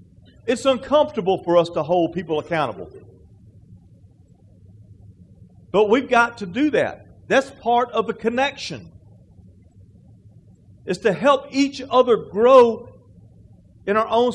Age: 40-59